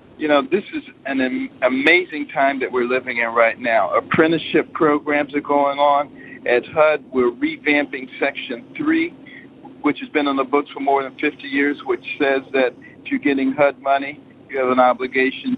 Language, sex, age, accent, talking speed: English, male, 50-69, American, 180 wpm